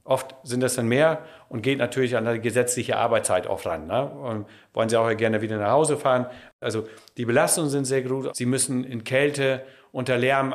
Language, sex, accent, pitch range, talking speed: German, male, German, 120-140 Hz, 205 wpm